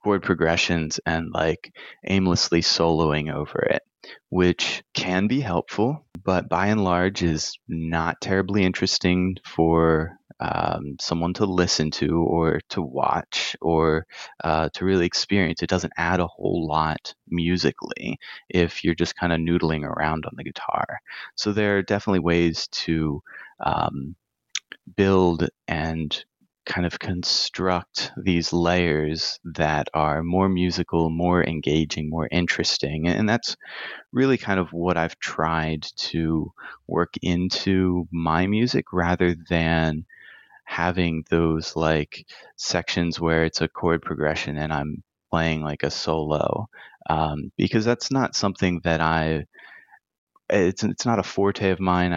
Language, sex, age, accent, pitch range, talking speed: English, male, 30-49, American, 80-90 Hz, 135 wpm